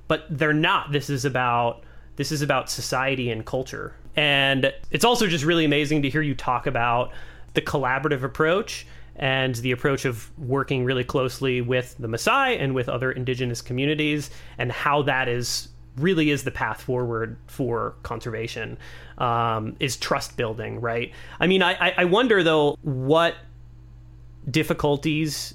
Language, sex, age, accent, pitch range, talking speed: English, male, 30-49, American, 120-145 Hz, 155 wpm